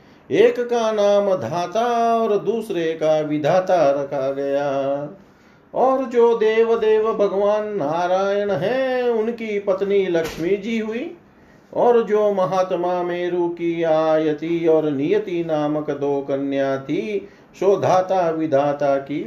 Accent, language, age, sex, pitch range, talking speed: native, Hindi, 50-69, male, 150-210 Hz, 115 wpm